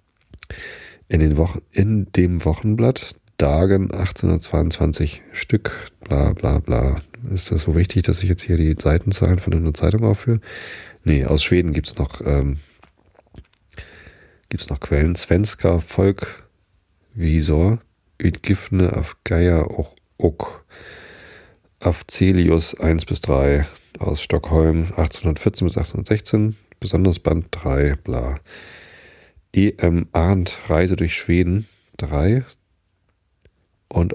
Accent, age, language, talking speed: German, 40-59, German, 105 wpm